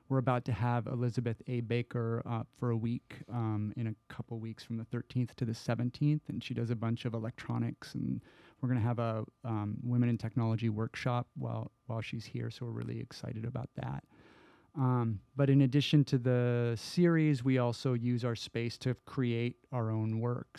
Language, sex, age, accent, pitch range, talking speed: English, male, 30-49, American, 115-130 Hz, 195 wpm